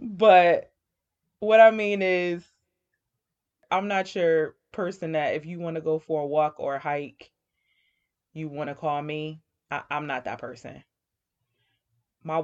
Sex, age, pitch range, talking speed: female, 20-39, 140-180 Hz, 155 wpm